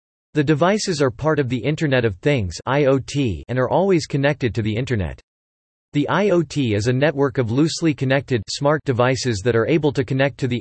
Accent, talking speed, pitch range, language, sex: American, 190 wpm, 115-150 Hz, English, male